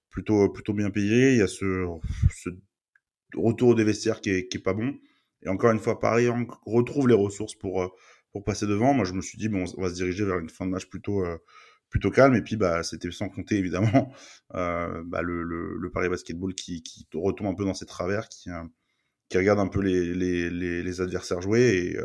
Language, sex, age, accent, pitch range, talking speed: French, male, 20-39, French, 90-110 Hz, 225 wpm